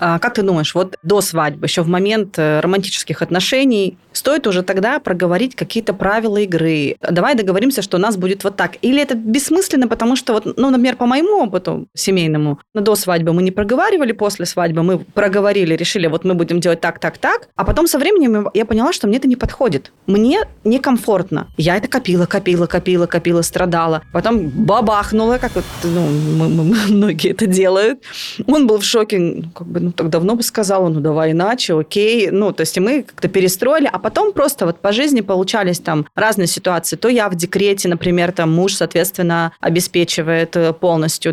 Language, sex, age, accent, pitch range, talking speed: Russian, female, 20-39, native, 175-225 Hz, 180 wpm